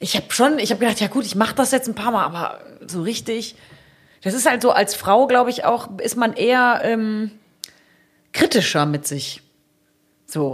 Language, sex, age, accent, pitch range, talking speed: German, female, 30-49, German, 160-245 Hz, 200 wpm